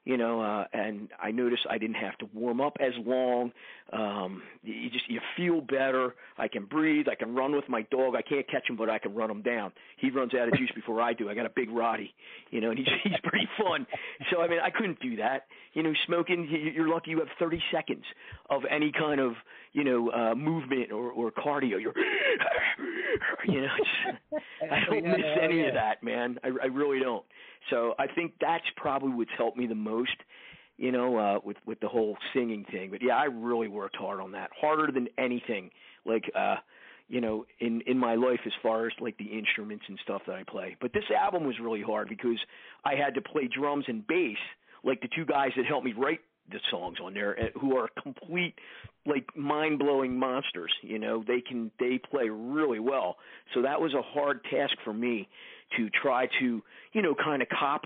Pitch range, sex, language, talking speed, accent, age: 115-150 Hz, male, English, 215 wpm, American, 50-69